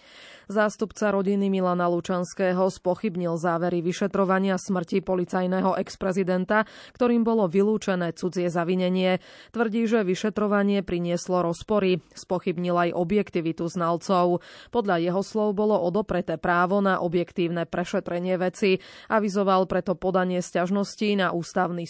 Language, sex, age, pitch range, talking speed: Slovak, female, 20-39, 175-200 Hz, 110 wpm